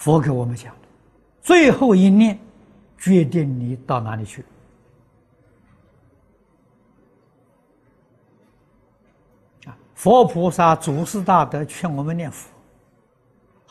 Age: 60-79